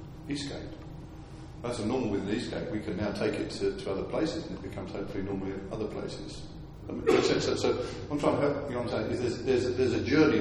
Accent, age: British, 40-59